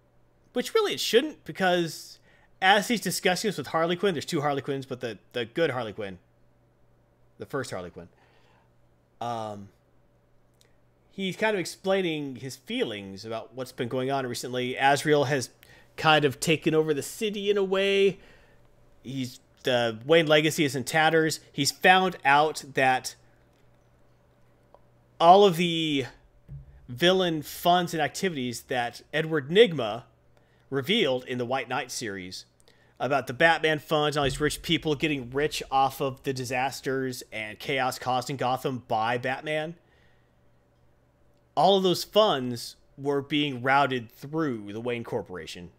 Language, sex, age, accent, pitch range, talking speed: English, male, 40-59, American, 125-165 Hz, 145 wpm